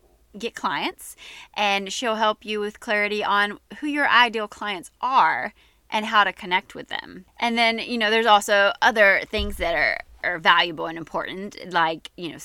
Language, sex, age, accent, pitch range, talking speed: English, female, 20-39, American, 170-210 Hz, 180 wpm